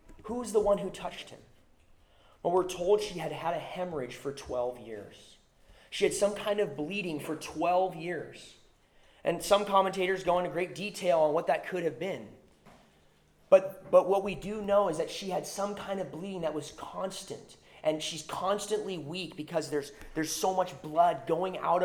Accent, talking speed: American, 185 wpm